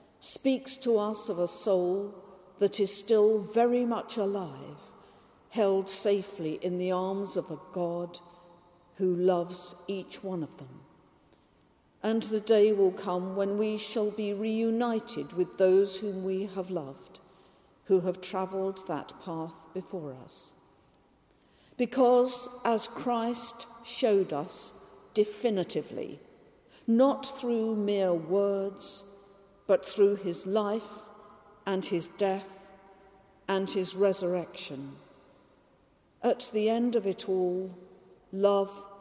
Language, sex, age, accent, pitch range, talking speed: English, female, 50-69, British, 175-210 Hz, 115 wpm